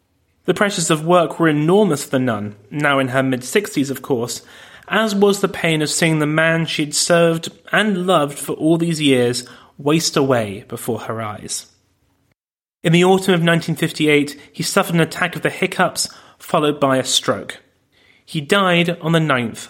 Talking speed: 170 wpm